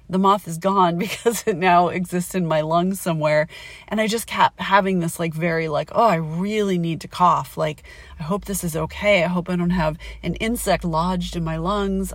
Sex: female